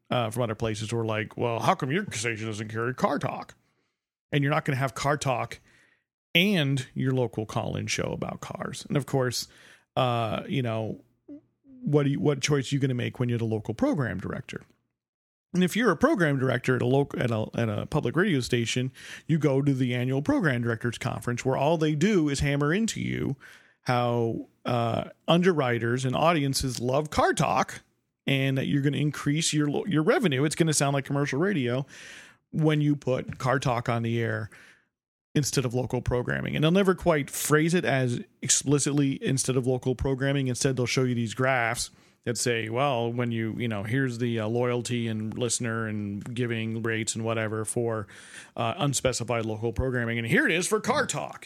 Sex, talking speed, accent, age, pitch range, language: male, 195 wpm, American, 40-59, 115-145 Hz, English